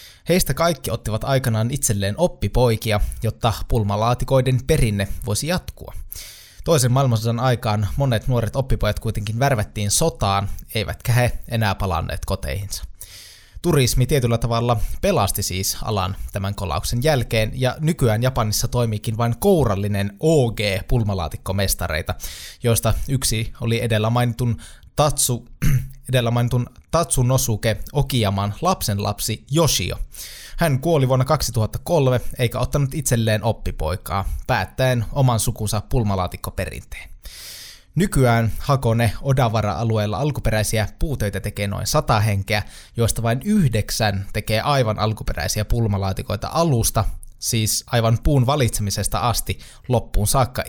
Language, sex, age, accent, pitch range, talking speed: Finnish, male, 20-39, native, 100-130 Hz, 105 wpm